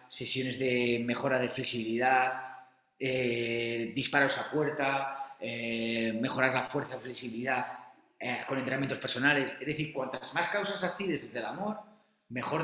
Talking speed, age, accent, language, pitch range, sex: 140 wpm, 30-49, Spanish, Spanish, 125-165 Hz, male